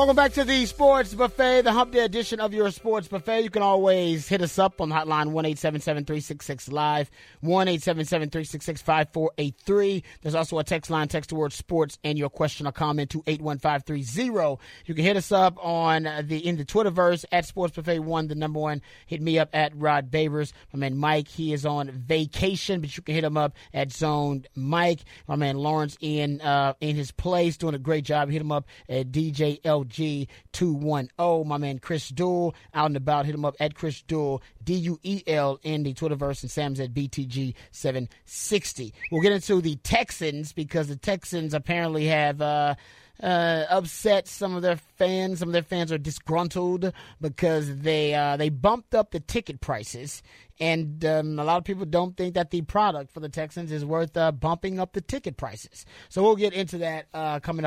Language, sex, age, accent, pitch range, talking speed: English, male, 30-49, American, 145-175 Hz, 205 wpm